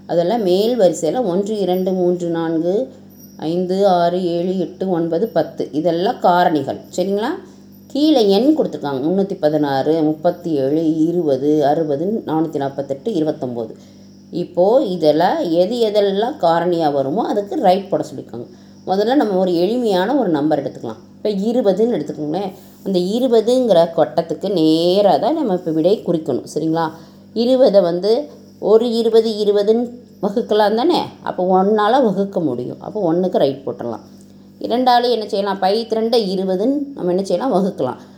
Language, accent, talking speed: Tamil, native, 130 wpm